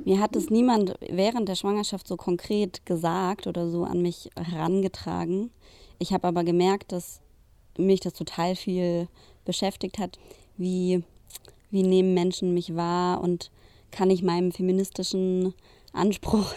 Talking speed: 140 wpm